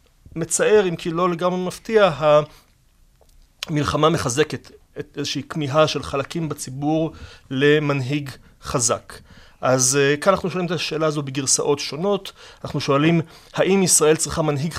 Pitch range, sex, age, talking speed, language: 135-165 Hz, male, 30-49, 125 wpm, Hebrew